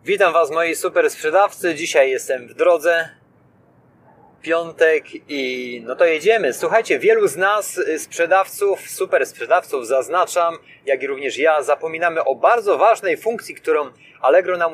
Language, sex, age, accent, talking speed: Polish, male, 30-49, native, 140 wpm